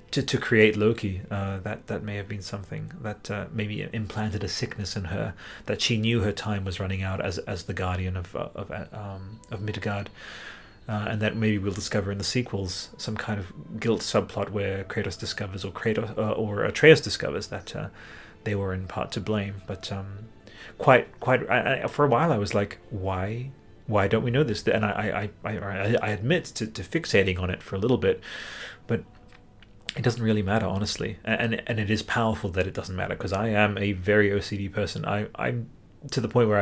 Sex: male